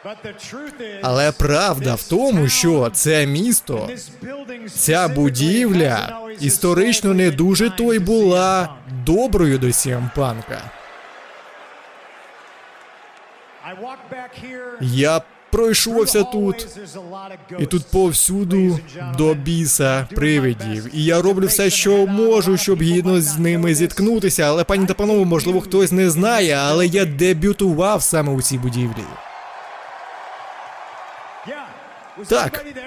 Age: 20-39